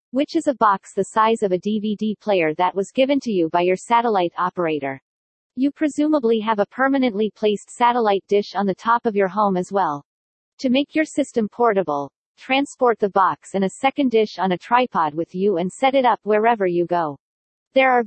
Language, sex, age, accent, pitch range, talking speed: English, female, 40-59, American, 190-245 Hz, 205 wpm